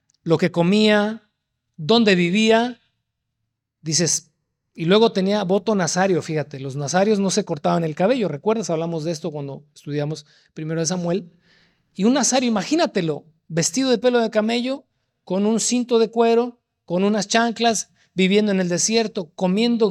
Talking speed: 150 wpm